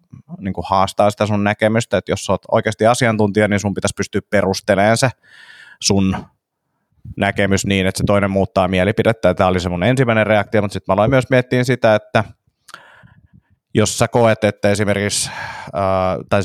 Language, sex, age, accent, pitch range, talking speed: Finnish, male, 30-49, native, 95-110 Hz, 170 wpm